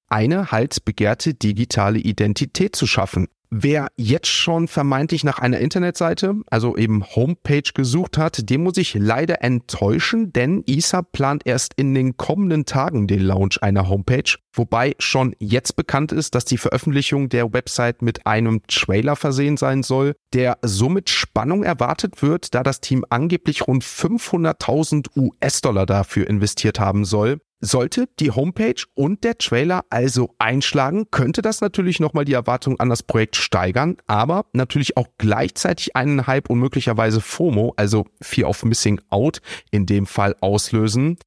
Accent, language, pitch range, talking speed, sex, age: German, German, 115-155 Hz, 150 wpm, male, 40-59